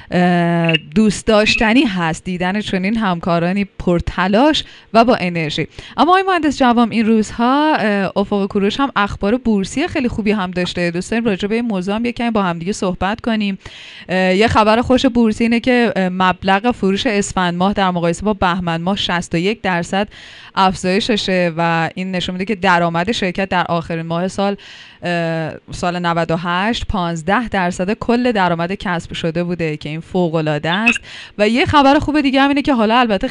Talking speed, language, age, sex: 160 wpm, Persian, 20-39, female